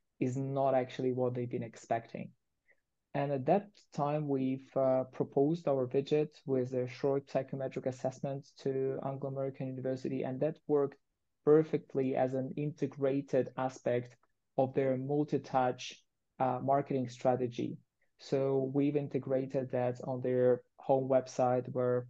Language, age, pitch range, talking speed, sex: English, 20-39, 125-135 Hz, 130 wpm, male